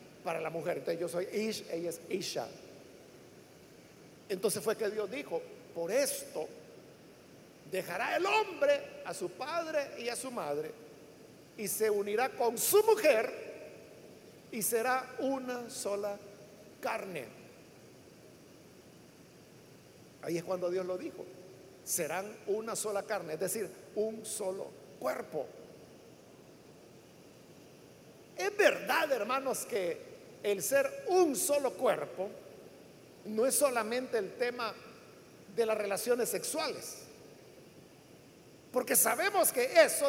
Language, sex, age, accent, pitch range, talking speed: Spanish, male, 50-69, Mexican, 210-310 Hz, 110 wpm